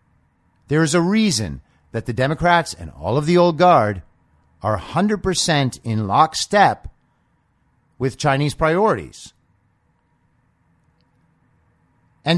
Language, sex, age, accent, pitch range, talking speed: English, male, 50-69, American, 105-145 Hz, 100 wpm